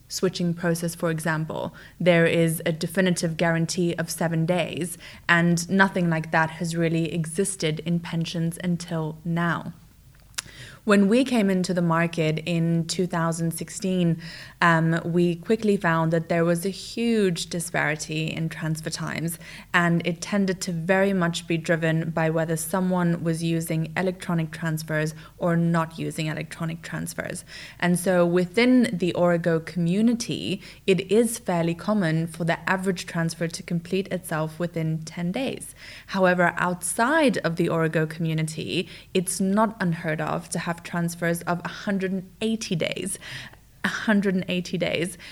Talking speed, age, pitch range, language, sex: 135 wpm, 20-39, 165-185 Hz, English, female